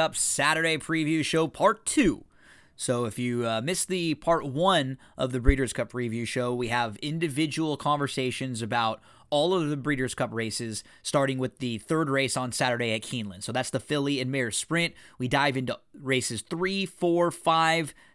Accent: American